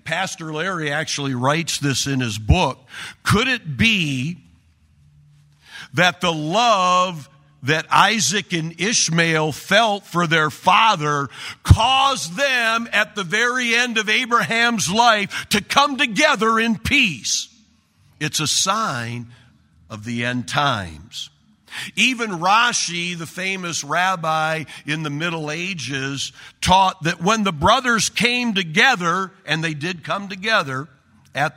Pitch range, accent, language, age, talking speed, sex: 140-205 Hz, American, English, 50-69, 125 wpm, male